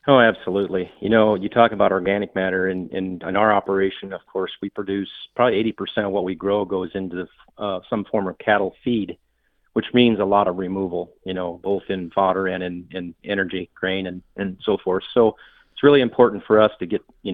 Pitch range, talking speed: 95-110 Hz, 210 wpm